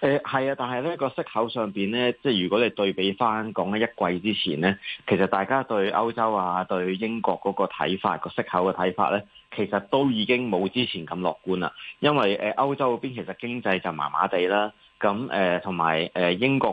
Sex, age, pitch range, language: male, 20-39, 95-120 Hz, Chinese